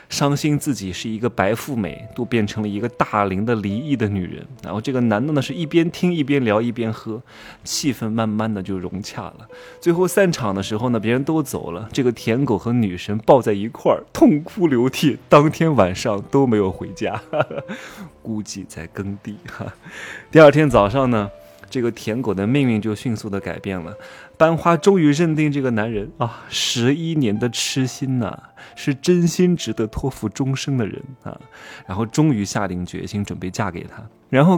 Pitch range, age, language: 100-130 Hz, 20-39, Chinese